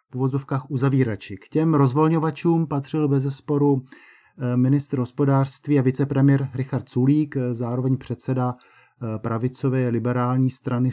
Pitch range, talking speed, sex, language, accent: 130-145 Hz, 105 wpm, male, Czech, native